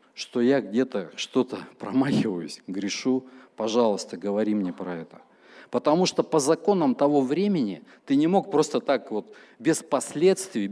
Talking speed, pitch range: 140 wpm, 115-180 Hz